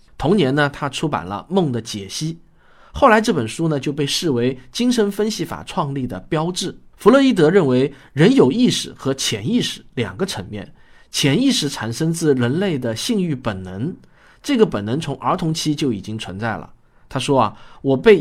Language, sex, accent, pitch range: Chinese, male, native, 125-195 Hz